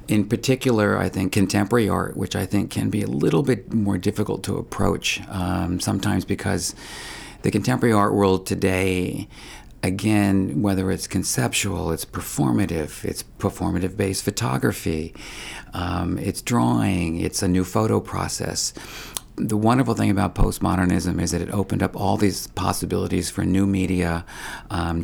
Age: 50-69